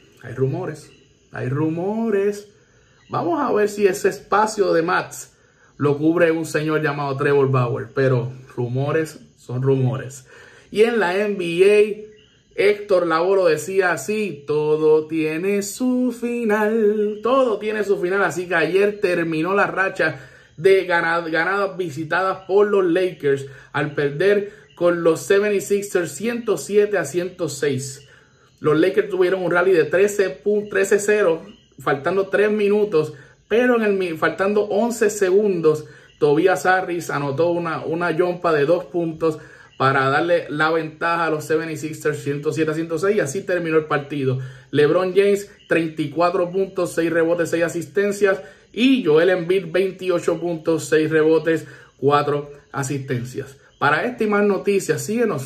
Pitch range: 150-200 Hz